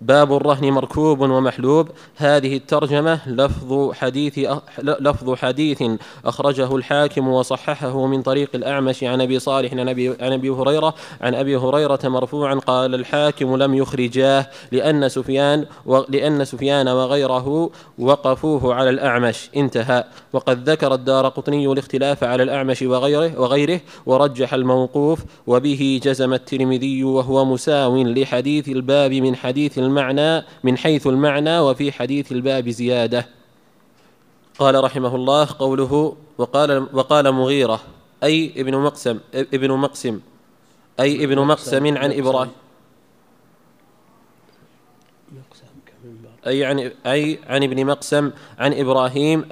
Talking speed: 120 wpm